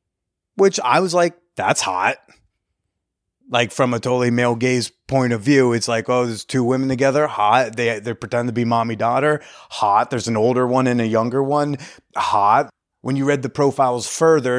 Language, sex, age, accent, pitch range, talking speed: English, male, 30-49, American, 110-135 Hz, 190 wpm